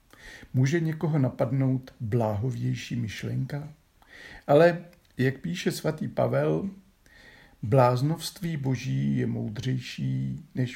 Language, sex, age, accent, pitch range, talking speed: Czech, male, 50-69, native, 115-155 Hz, 85 wpm